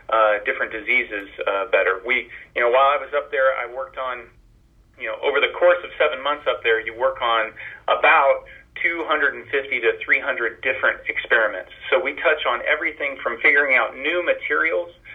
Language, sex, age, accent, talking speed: English, male, 40-59, American, 195 wpm